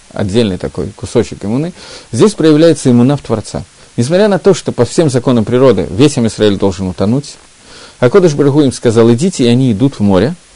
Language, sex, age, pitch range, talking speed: Russian, male, 40-59, 115-160 Hz, 175 wpm